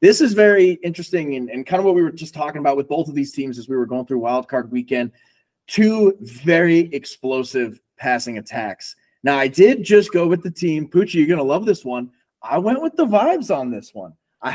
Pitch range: 125-195 Hz